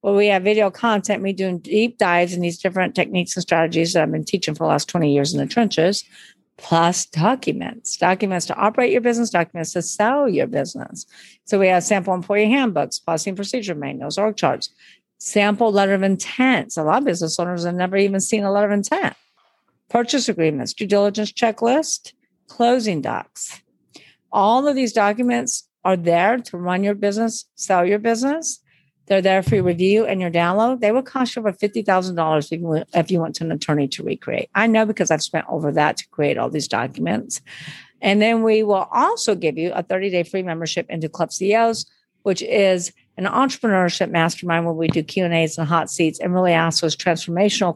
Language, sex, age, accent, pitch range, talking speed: English, female, 50-69, American, 165-215 Hz, 190 wpm